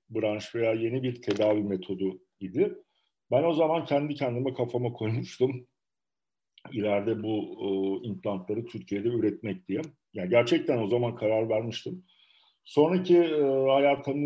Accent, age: native, 50-69